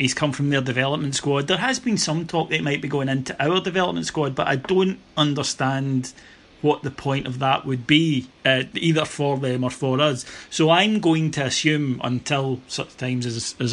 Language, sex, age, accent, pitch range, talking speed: English, male, 30-49, British, 130-150 Hz, 205 wpm